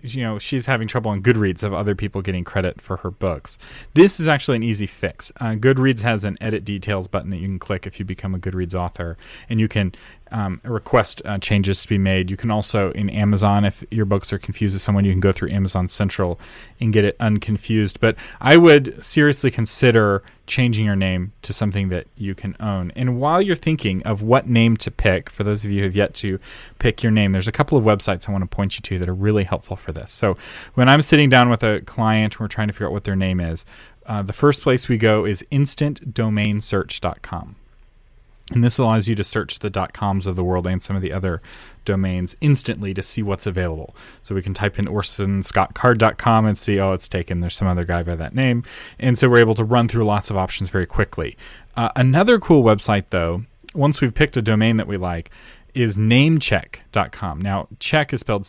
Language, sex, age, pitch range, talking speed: English, male, 30-49, 95-115 Hz, 225 wpm